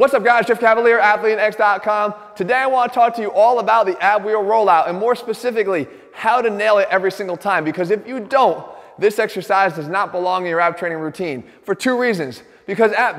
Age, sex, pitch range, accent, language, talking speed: 20-39, male, 170-225 Hz, American, English, 220 wpm